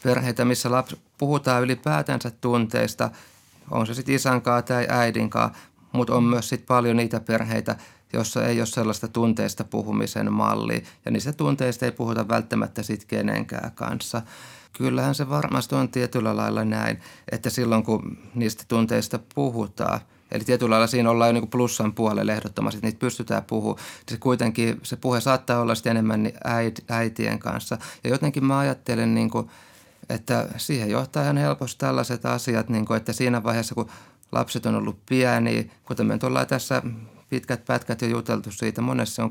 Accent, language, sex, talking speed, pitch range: native, Finnish, male, 160 wpm, 110-125 Hz